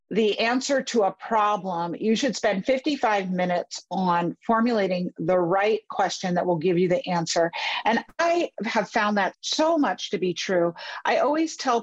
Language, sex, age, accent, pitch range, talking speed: English, female, 50-69, American, 180-230 Hz, 170 wpm